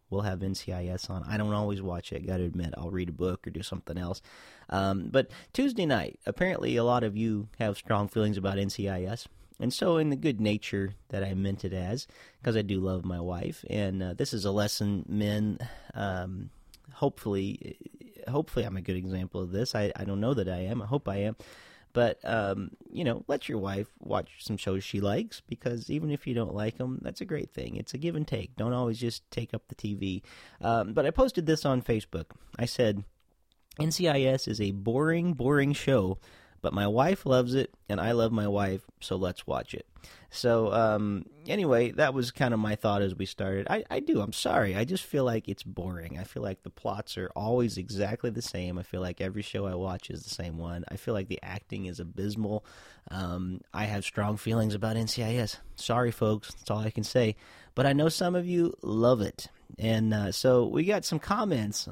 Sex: male